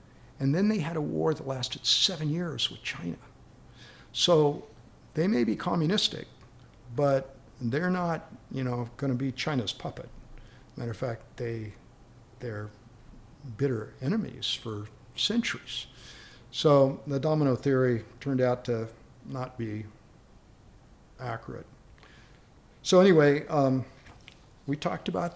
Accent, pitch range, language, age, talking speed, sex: American, 115-140 Hz, English, 60-79, 120 wpm, male